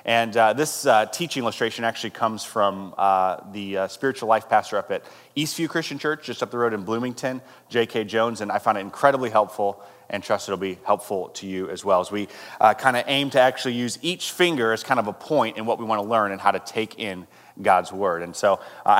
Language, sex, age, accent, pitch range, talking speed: English, male, 30-49, American, 105-135 Hz, 240 wpm